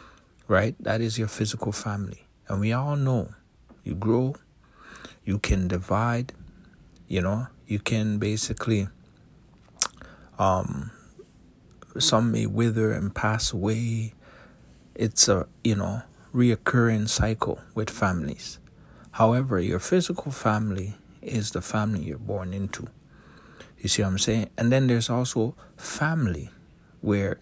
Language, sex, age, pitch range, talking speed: English, male, 60-79, 100-120 Hz, 125 wpm